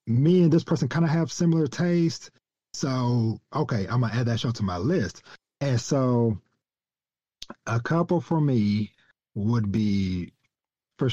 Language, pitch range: English, 110-145 Hz